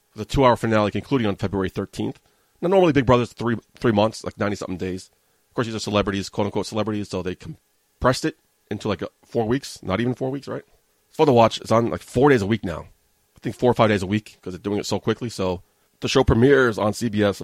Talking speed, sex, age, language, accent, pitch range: 250 wpm, male, 30-49, English, American, 100-130 Hz